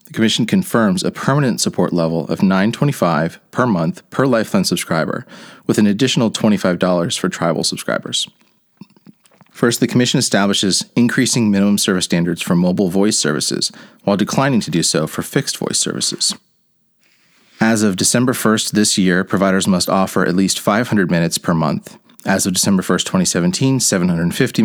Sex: male